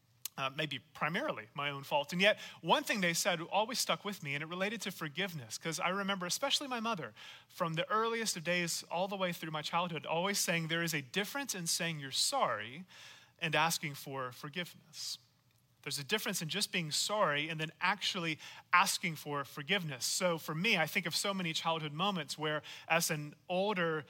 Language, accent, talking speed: English, American, 195 wpm